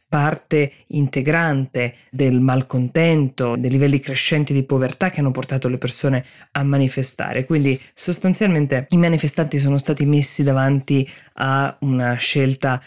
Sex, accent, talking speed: female, native, 125 wpm